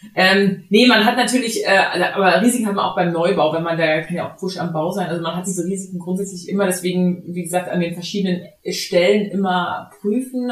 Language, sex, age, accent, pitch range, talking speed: German, female, 20-39, German, 165-195 Hz, 220 wpm